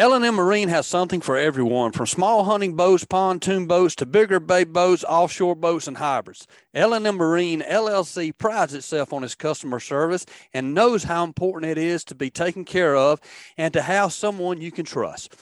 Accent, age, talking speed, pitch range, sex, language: American, 40-59, 185 wpm, 140-185 Hz, male, English